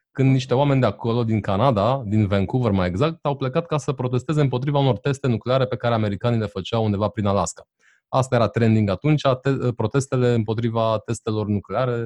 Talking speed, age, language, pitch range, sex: 185 wpm, 30-49, Romanian, 105-135 Hz, male